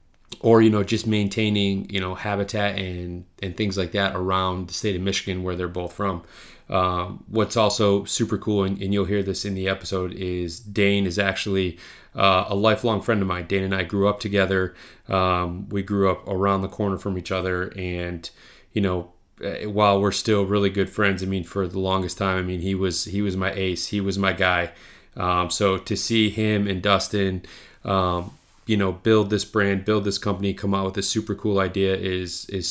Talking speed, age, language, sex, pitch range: 205 wpm, 30-49, English, male, 95-105 Hz